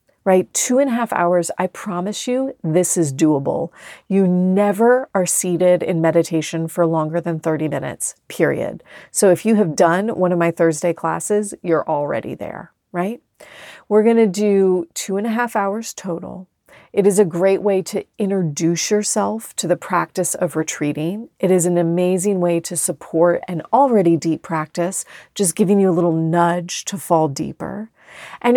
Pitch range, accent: 170-210 Hz, American